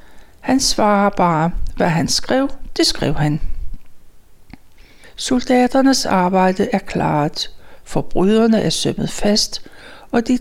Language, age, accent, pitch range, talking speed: Danish, 60-79, native, 180-225 Hz, 110 wpm